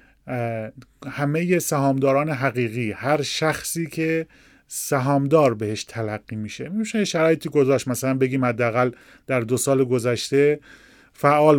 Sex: male